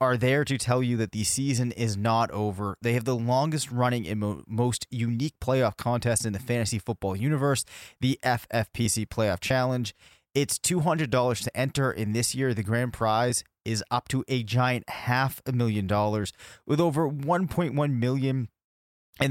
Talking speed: 170 wpm